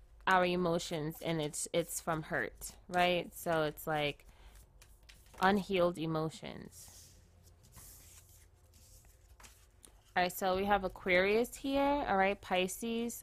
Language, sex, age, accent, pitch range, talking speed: English, female, 20-39, American, 165-200 Hz, 105 wpm